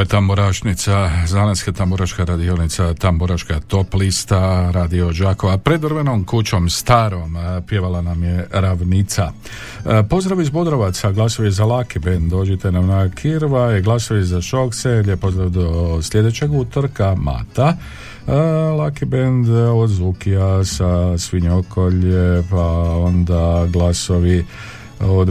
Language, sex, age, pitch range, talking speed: Croatian, male, 50-69, 85-110 Hz, 115 wpm